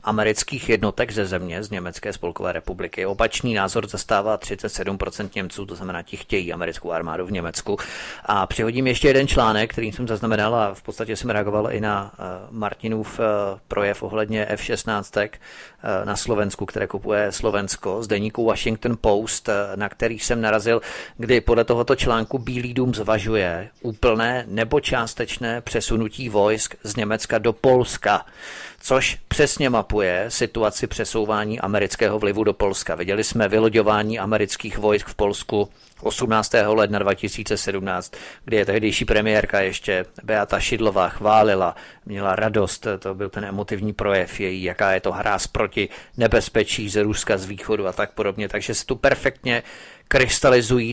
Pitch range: 105-115 Hz